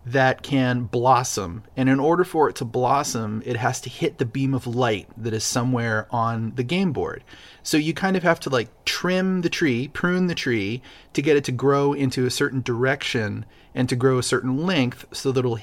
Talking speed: 215 wpm